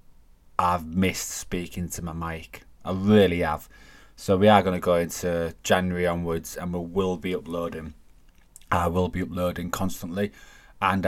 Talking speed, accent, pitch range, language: 155 wpm, British, 85-95 Hz, English